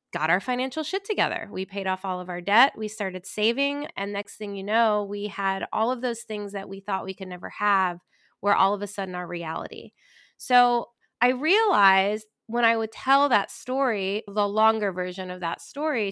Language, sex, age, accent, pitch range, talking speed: English, female, 20-39, American, 190-235 Hz, 205 wpm